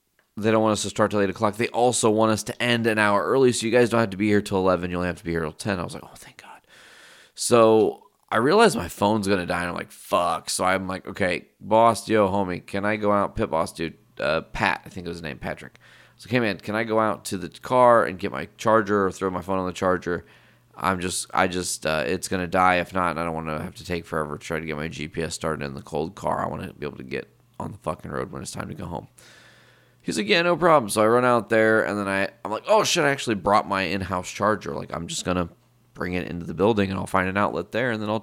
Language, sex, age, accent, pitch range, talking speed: English, male, 30-49, American, 90-110 Hz, 295 wpm